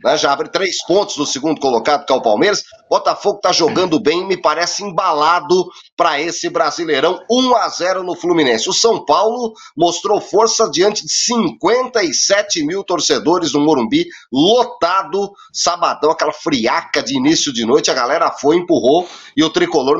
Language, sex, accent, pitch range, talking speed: Portuguese, male, Brazilian, 155-245 Hz, 155 wpm